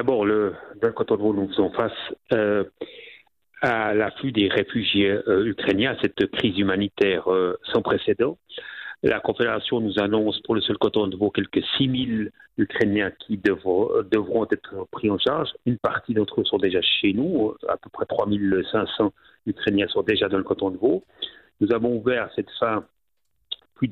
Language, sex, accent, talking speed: French, male, French, 185 wpm